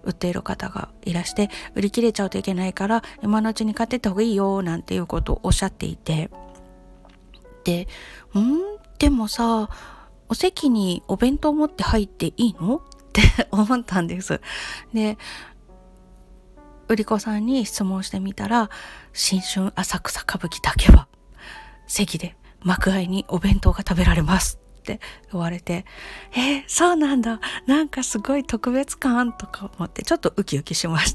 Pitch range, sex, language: 175-235 Hz, female, Japanese